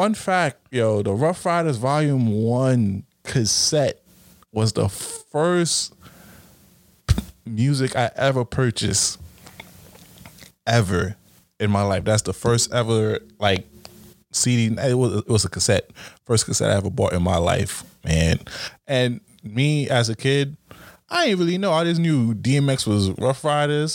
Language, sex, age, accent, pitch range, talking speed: English, male, 20-39, American, 95-135 Hz, 140 wpm